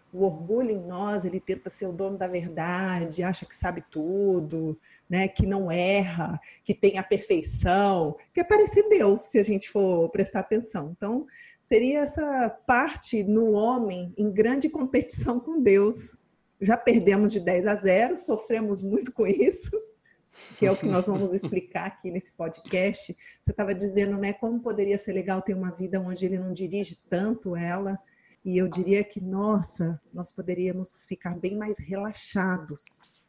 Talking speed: 165 wpm